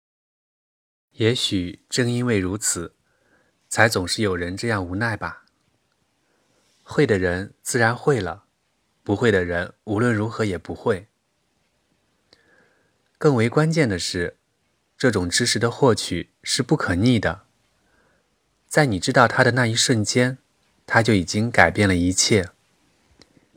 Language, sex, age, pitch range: Chinese, male, 20-39, 95-125 Hz